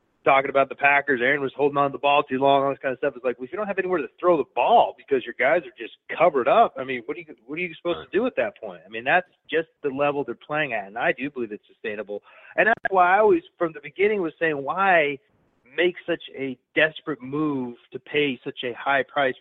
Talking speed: 265 wpm